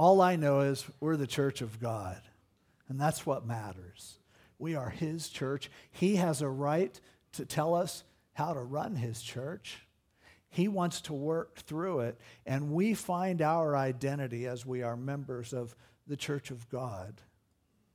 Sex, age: male, 60-79